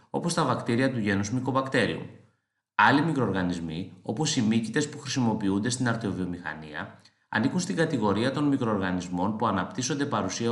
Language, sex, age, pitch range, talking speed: Greek, male, 30-49, 100-130 Hz, 130 wpm